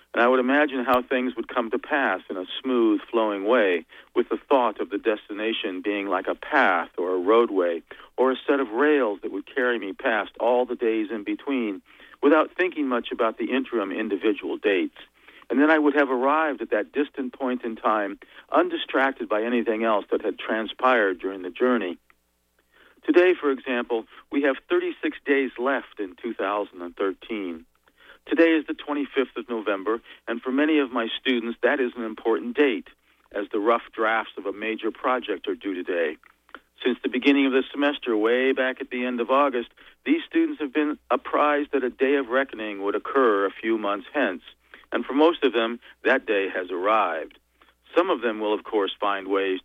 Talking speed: 190 wpm